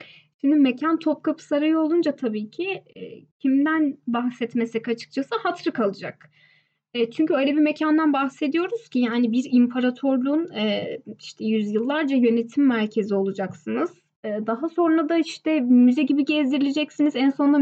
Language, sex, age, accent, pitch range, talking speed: Turkish, female, 10-29, native, 225-305 Hz, 135 wpm